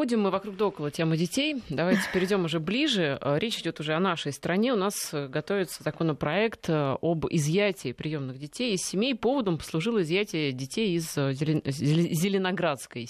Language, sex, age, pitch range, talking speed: Russian, female, 30-49, 145-200 Hz, 150 wpm